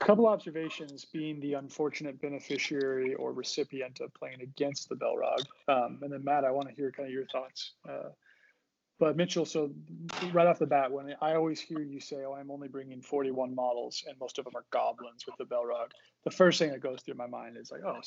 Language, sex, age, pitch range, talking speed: English, male, 30-49, 130-160 Hz, 220 wpm